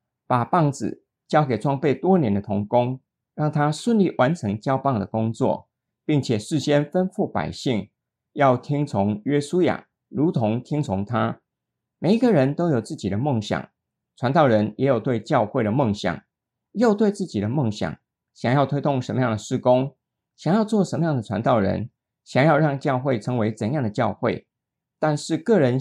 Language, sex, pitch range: Chinese, male, 115-160 Hz